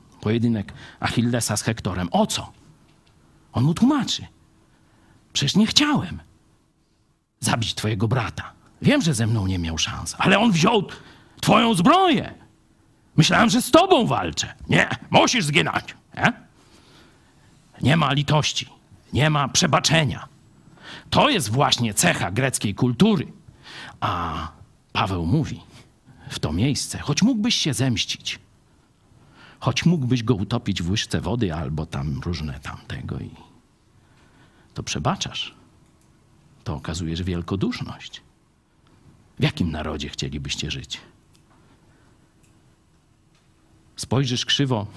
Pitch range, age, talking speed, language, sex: 100-145 Hz, 50-69, 110 wpm, Polish, male